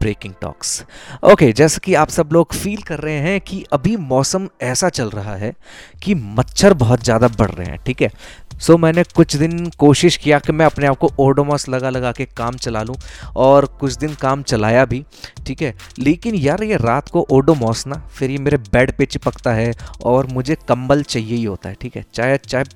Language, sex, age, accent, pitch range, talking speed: Hindi, male, 20-39, native, 115-145 Hz, 215 wpm